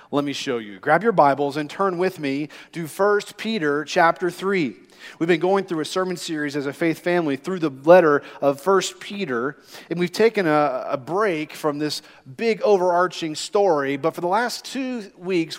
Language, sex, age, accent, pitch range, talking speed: English, male, 40-59, American, 155-195 Hz, 195 wpm